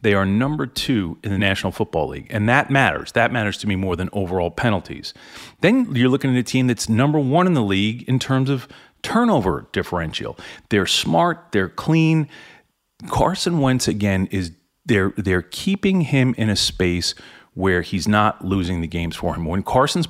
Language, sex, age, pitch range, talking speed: English, male, 40-59, 95-130 Hz, 185 wpm